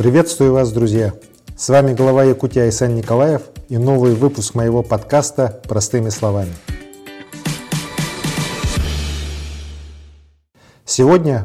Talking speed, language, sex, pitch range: 90 wpm, Russian, male, 105-135 Hz